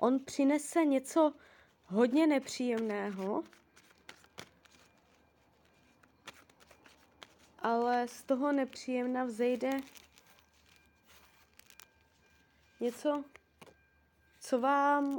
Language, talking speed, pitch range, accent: Czech, 50 wpm, 235-275 Hz, native